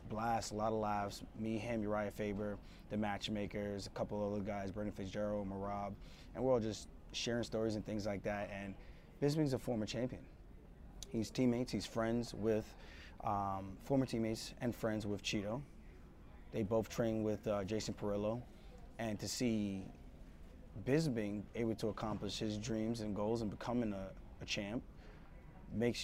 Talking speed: 165 wpm